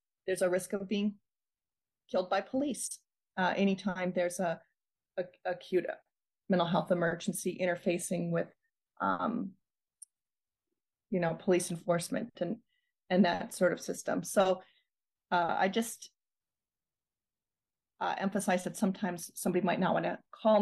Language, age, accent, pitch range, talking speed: English, 30-49, American, 175-195 Hz, 130 wpm